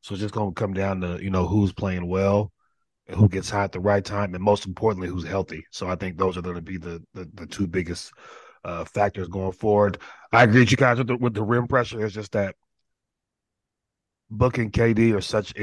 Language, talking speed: English, 240 wpm